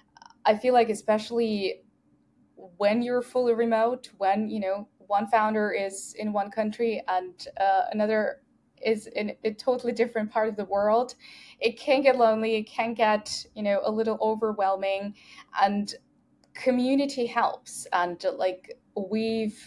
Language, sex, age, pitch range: English, female, 10-29, 195-240 Hz